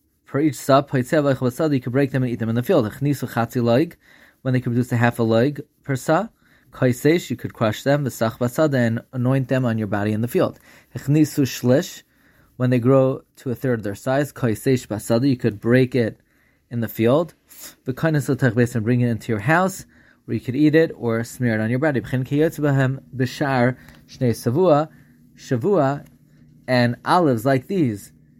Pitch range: 120-155 Hz